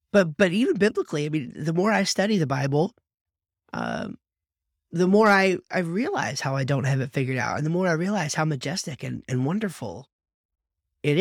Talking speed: 195 wpm